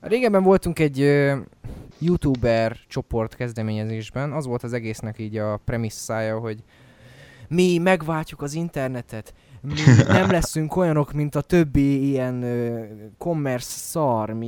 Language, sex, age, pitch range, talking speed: Hungarian, male, 20-39, 110-140 Hz, 115 wpm